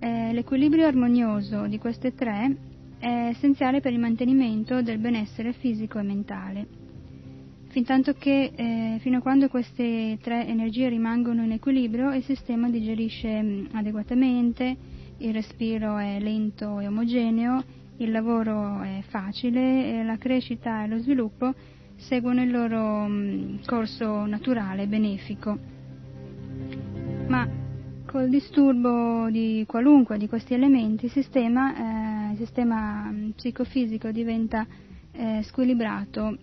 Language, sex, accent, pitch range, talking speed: Italian, female, native, 215-250 Hz, 110 wpm